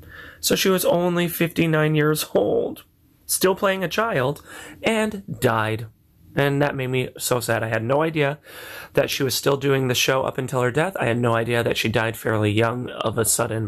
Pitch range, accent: 115-155 Hz, American